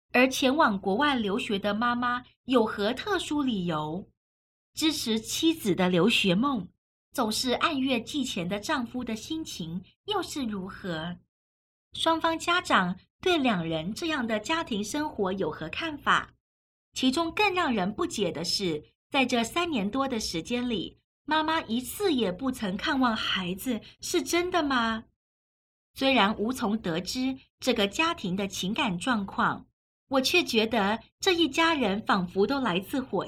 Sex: female